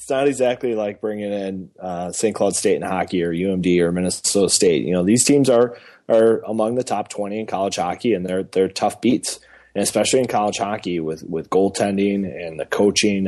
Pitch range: 95-110 Hz